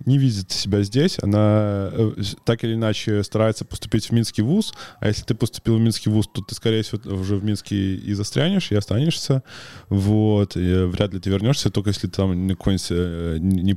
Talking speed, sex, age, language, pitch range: 185 wpm, male, 20-39, Russian, 95-115 Hz